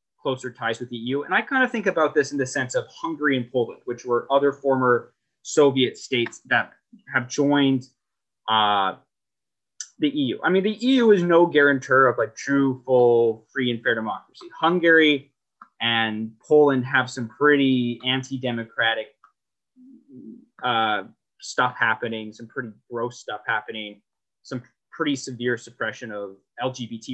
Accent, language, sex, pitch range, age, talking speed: American, English, male, 120-180 Hz, 20-39, 150 wpm